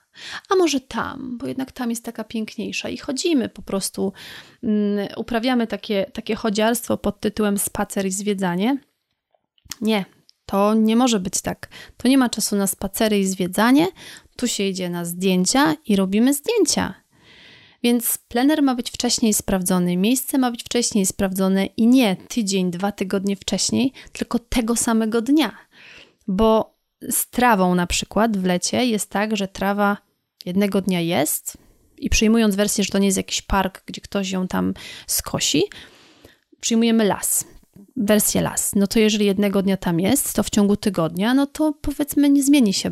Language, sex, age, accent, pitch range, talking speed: Polish, female, 30-49, native, 195-240 Hz, 160 wpm